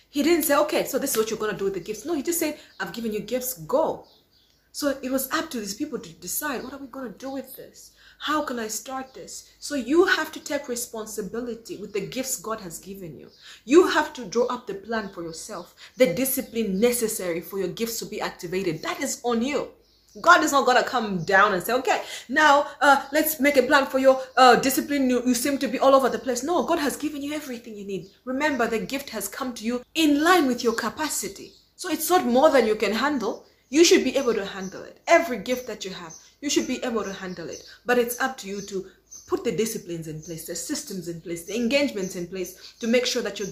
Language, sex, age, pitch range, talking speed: English, female, 30-49, 200-280 Hz, 250 wpm